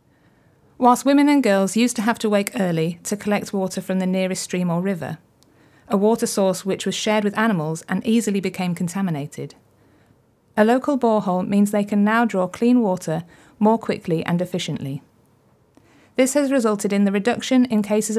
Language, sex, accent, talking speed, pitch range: English, female, British, 175 wpm, 180-230 Hz